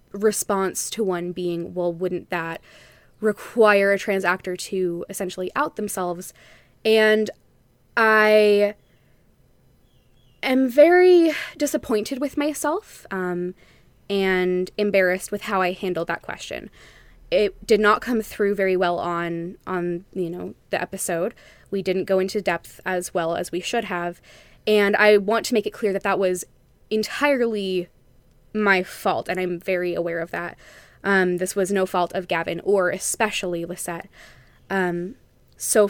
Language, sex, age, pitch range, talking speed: English, female, 10-29, 175-210 Hz, 145 wpm